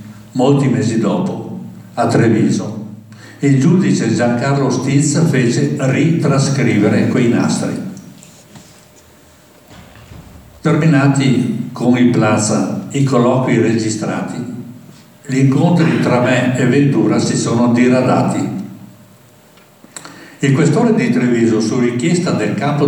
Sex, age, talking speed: male, 60-79, 95 wpm